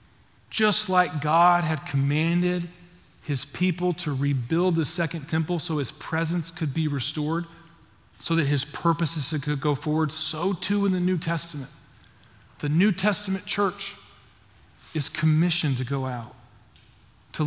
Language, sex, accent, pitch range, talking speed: English, male, American, 120-160 Hz, 140 wpm